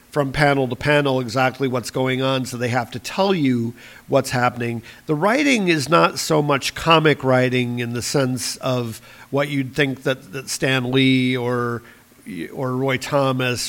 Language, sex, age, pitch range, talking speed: English, male, 50-69, 120-145 Hz, 170 wpm